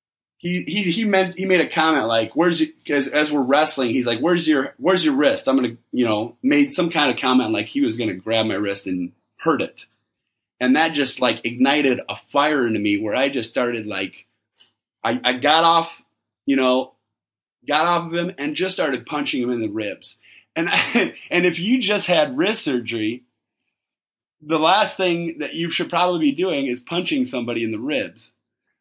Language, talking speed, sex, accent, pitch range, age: English, 200 wpm, male, American, 120-170 Hz, 30-49